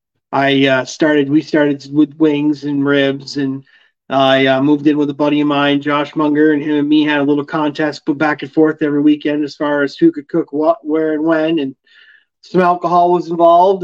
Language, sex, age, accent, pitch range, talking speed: English, male, 40-59, American, 145-175 Hz, 215 wpm